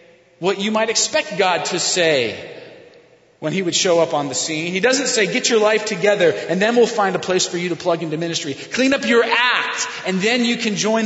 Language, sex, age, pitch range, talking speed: English, male, 30-49, 150-210 Hz, 235 wpm